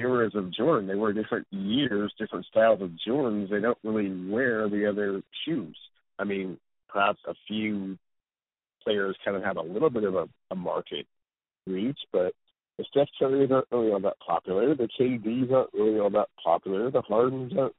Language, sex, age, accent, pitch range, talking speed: English, male, 50-69, American, 95-115 Hz, 180 wpm